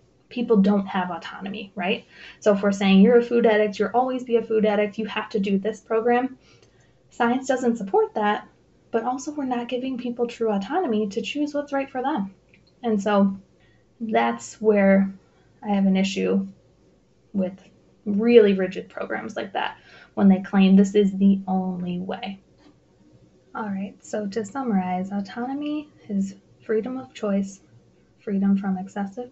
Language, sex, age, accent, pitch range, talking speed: English, female, 20-39, American, 195-240 Hz, 160 wpm